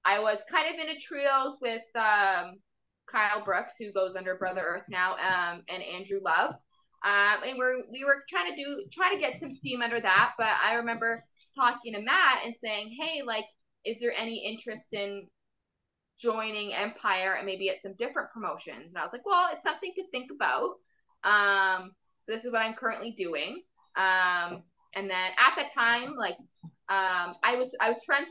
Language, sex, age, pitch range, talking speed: English, female, 20-39, 195-255 Hz, 190 wpm